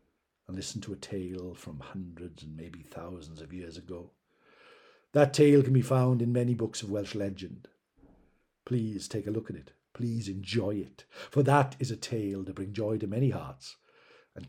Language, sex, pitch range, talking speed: English, male, 95-130 Hz, 180 wpm